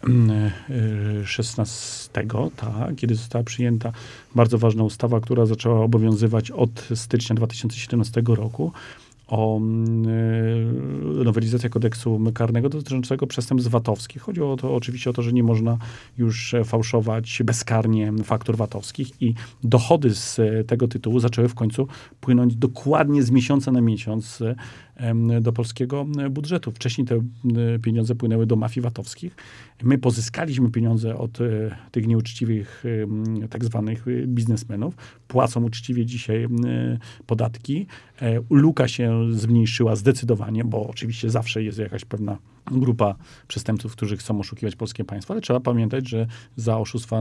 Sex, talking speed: male, 125 wpm